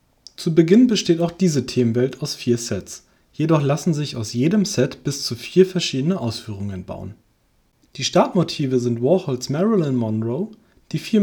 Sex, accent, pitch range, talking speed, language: male, German, 120-175 Hz, 155 wpm, German